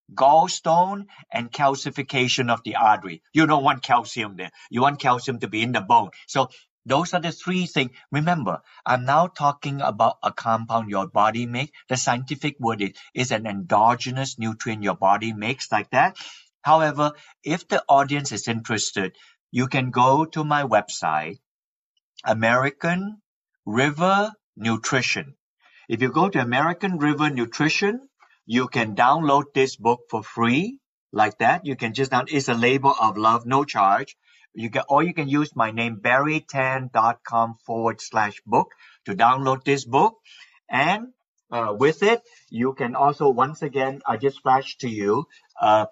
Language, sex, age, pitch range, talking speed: English, male, 50-69, 115-155 Hz, 160 wpm